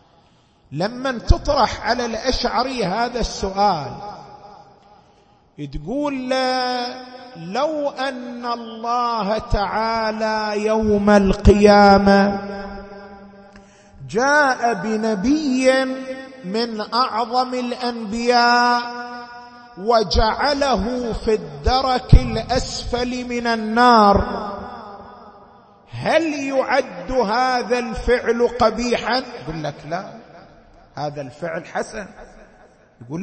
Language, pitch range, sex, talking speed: Arabic, 215-260 Hz, male, 65 wpm